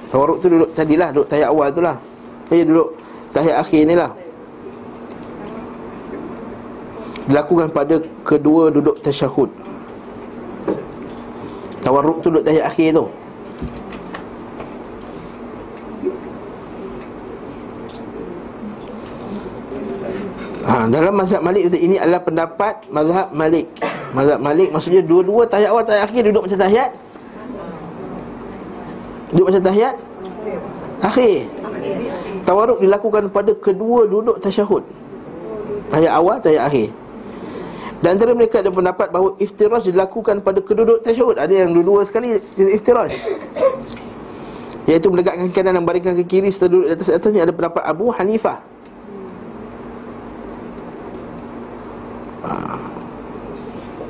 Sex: male